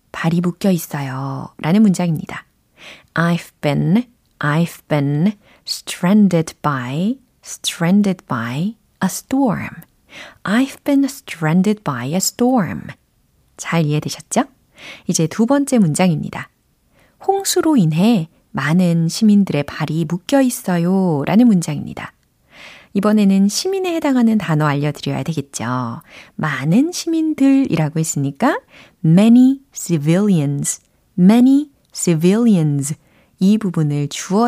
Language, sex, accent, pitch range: Korean, female, native, 155-245 Hz